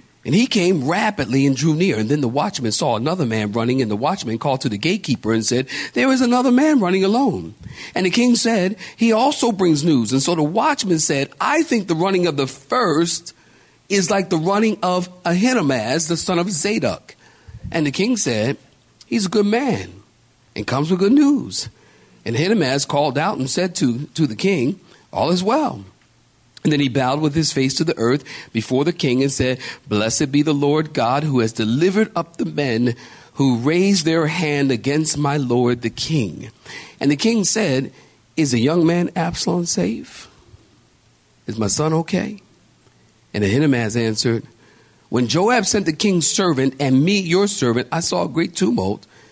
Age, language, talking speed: 50-69, English, 185 wpm